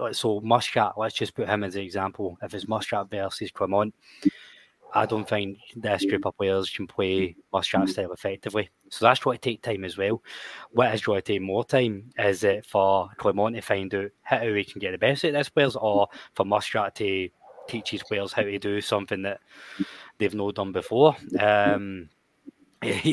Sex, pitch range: male, 100-120 Hz